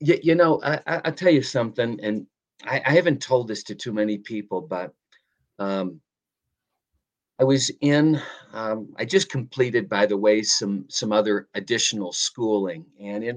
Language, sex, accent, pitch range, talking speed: English, male, American, 105-130 Hz, 155 wpm